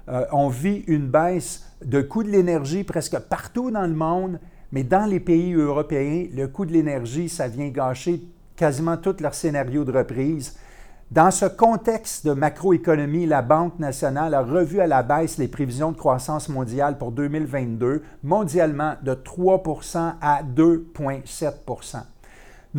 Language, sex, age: French, male, 50-69